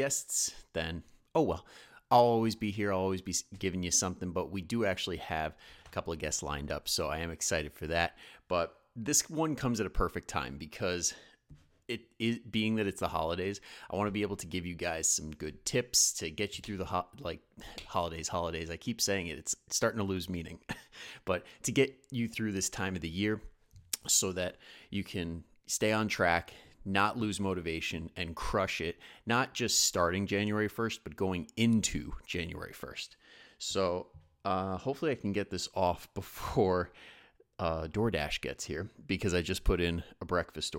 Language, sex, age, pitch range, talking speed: English, male, 30-49, 85-105 Hz, 190 wpm